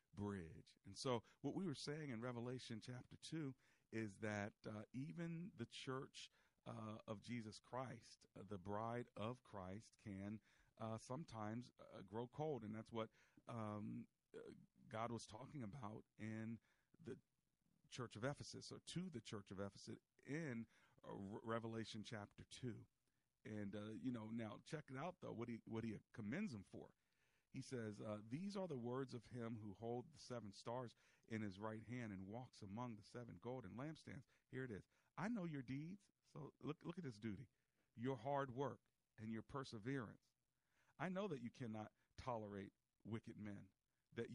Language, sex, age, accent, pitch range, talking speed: English, male, 50-69, American, 105-130 Hz, 170 wpm